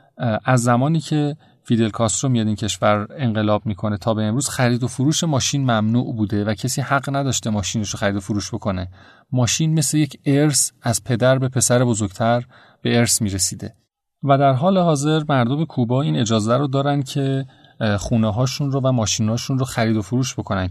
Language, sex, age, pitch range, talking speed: Persian, male, 40-59, 110-135 Hz, 180 wpm